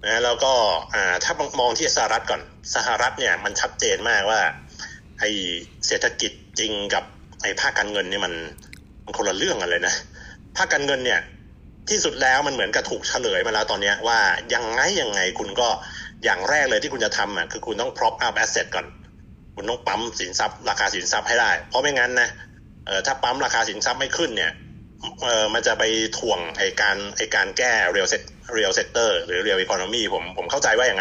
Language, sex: Thai, male